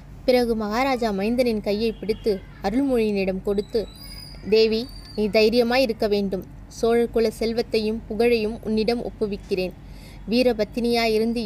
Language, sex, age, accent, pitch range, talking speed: Tamil, female, 20-39, native, 205-235 Hz, 90 wpm